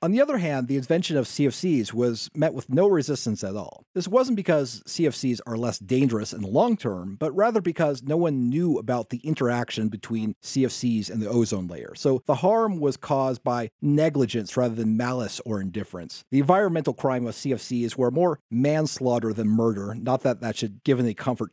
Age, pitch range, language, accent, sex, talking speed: 40-59, 110-145 Hz, English, American, male, 195 wpm